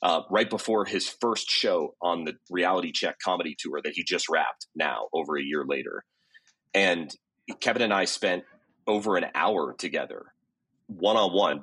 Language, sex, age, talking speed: English, male, 30-49, 160 wpm